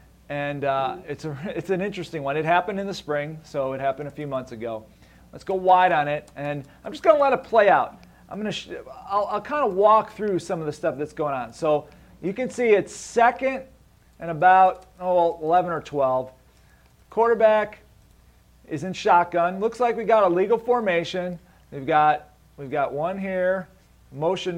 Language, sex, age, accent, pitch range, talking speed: English, male, 40-59, American, 155-215 Hz, 195 wpm